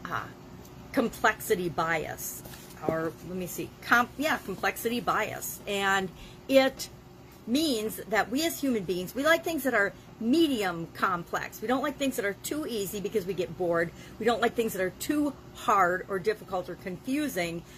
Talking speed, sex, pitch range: 170 wpm, female, 185-265 Hz